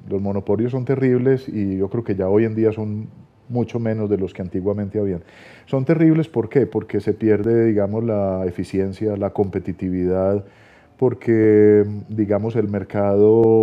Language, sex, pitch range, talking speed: Spanish, male, 105-125 Hz, 160 wpm